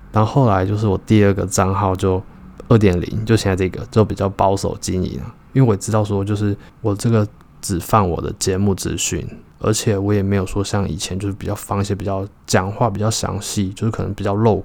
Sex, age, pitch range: male, 20-39, 95-105 Hz